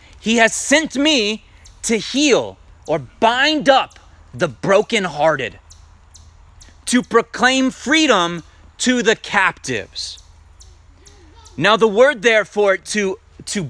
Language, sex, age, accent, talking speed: English, male, 30-49, American, 100 wpm